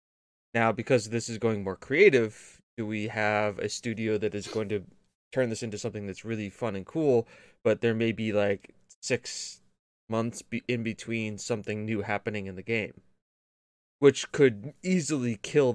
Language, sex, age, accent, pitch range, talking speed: English, male, 20-39, American, 105-115 Hz, 170 wpm